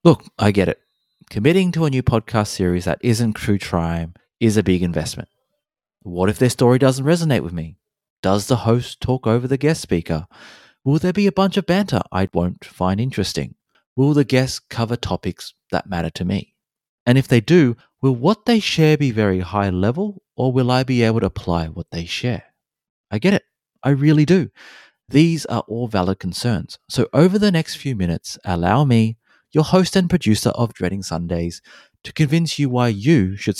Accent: Australian